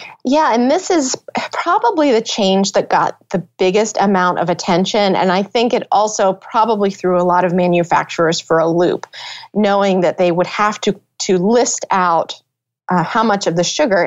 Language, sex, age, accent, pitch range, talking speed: English, female, 30-49, American, 175-220 Hz, 185 wpm